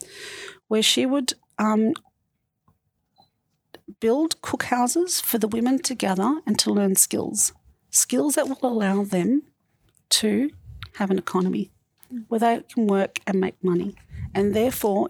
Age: 40-59